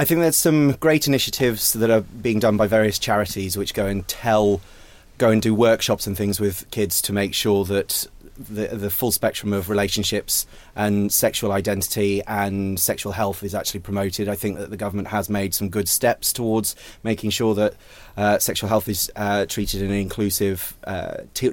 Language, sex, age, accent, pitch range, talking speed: English, male, 30-49, British, 100-110 Hz, 190 wpm